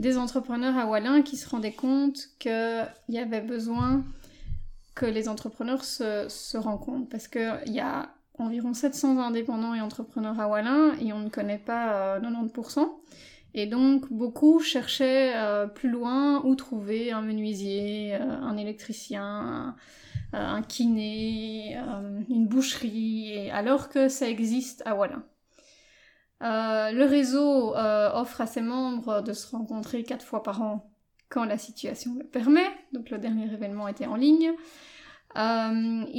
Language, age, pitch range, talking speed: French, 20-39, 220-260 Hz, 140 wpm